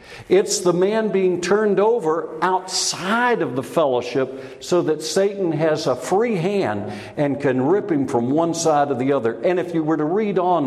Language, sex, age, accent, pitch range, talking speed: English, male, 60-79, American, 130-175 Hz, 190 wpm